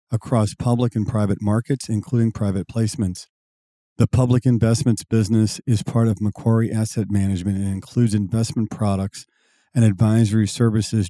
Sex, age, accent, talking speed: male, 40-59, American, 135 wpm